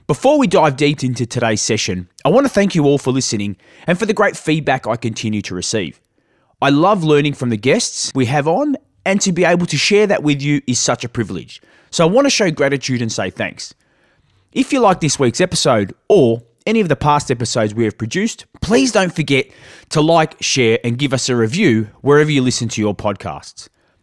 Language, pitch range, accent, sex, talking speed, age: English, 115-170 Hz, Australian, male, 215 wpm, 20-39